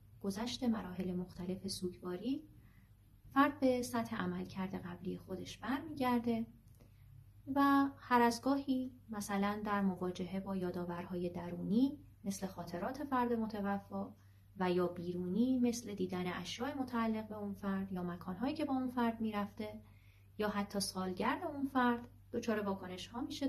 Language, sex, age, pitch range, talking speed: Persian, female, 30-49, 175-245 Hz, 135 wpm